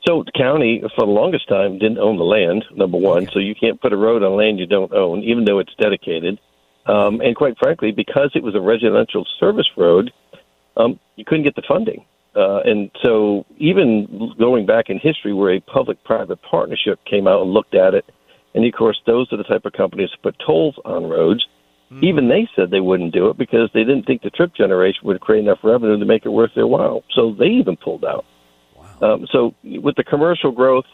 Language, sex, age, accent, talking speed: English, male, 60-79, American, 215 wpm